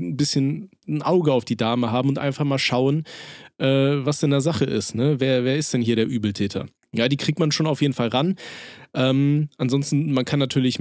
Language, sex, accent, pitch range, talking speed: German, male, German, 120-145 Hz, 215 wpm